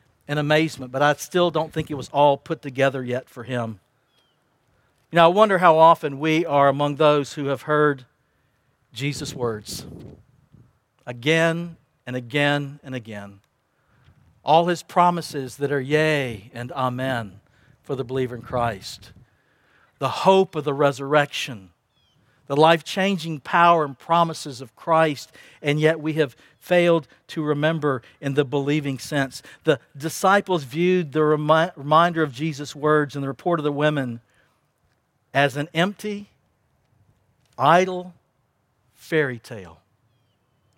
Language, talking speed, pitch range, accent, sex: English, 135 wpm, 130-160 Hz, American, male